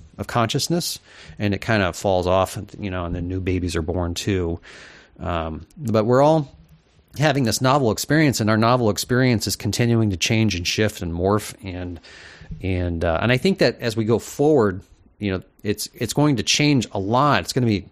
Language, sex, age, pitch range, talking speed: English, male, 30-49, 90-115 Hz, 205 wpm